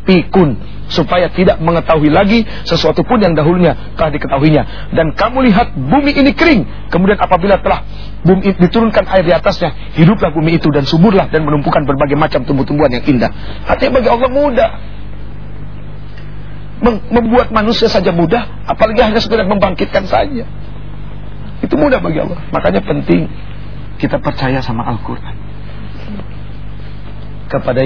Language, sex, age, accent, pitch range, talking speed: English, male, 40-59, Indonesian, 115-165 Hz, 130 wpm